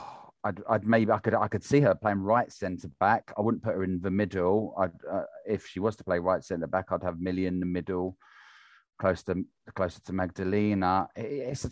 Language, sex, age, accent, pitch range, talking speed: English, male, 30-49, British, 95-110 Hz, 220 wpm